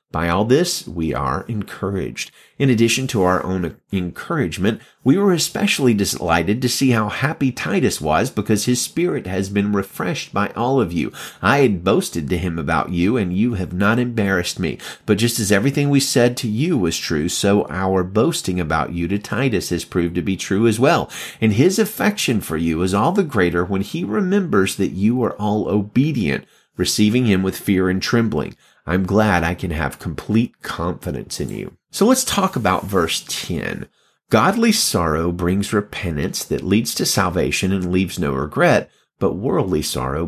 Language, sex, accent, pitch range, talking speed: English, male, American, 90-130 Hz, 180 wpm